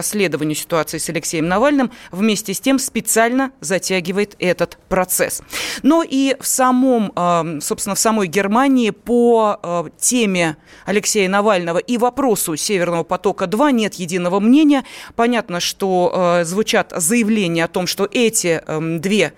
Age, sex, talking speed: 30-49, female, 120 wpm